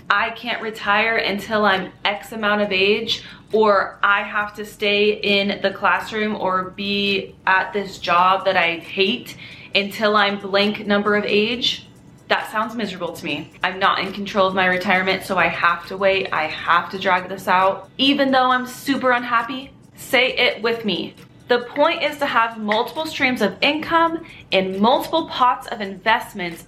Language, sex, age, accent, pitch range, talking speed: English, female, 30-49, American, 190-245 Hz, 175 wpm